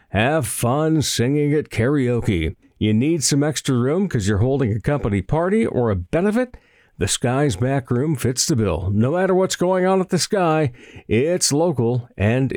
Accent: American